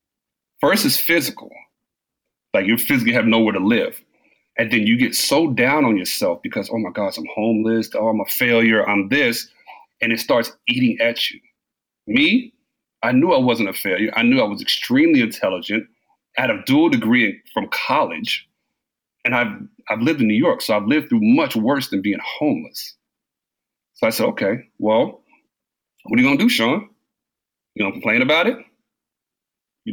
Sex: male